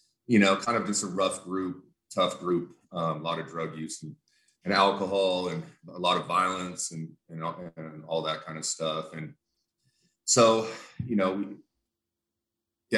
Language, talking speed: English, 170 wpm